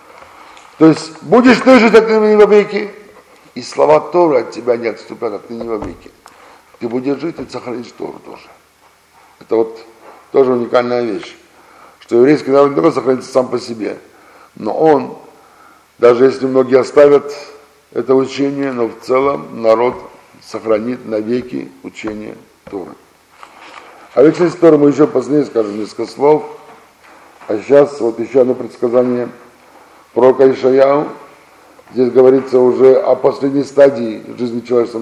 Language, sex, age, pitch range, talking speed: Russian, male, 50-69, 120-145 Hz, 140 wpm